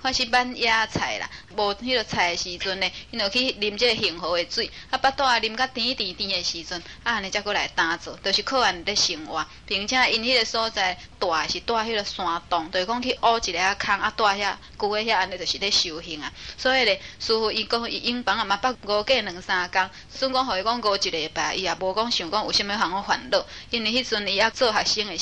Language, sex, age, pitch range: English, female, 20-39, 185-235 Hz